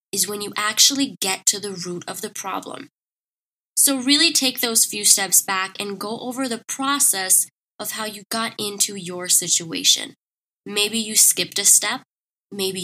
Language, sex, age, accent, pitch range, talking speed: English, female, 10-29, American, 190-235 Hz, 170 wpm